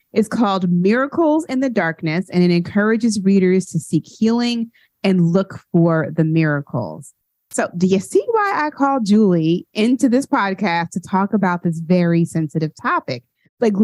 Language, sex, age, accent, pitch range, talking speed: English, female, 30-49, American, 170-225 Hz, 160 wpm